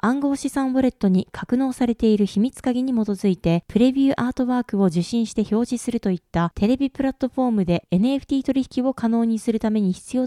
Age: 20-39